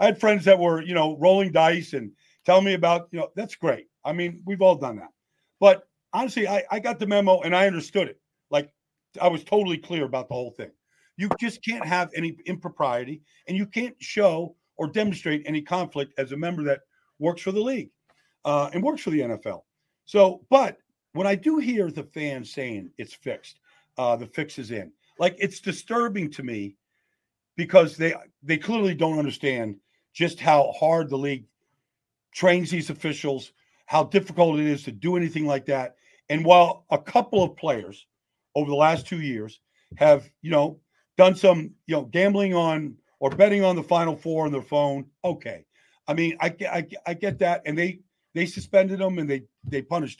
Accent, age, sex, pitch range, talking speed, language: American, 50-69, male, 145-195 Hz, 190 wpm, English